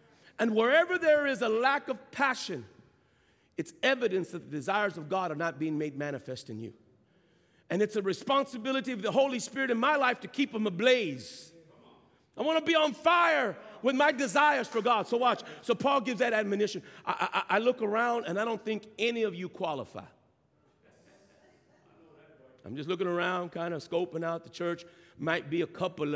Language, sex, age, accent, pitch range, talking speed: English, male, 50-69, American, 170-250 Hz, 190 wpm